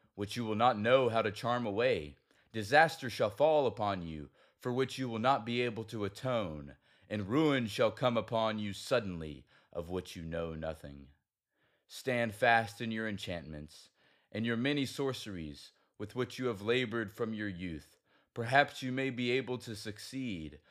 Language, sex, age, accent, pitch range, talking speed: English, male, 30-49, American, 95-125 Hz, 170 wpm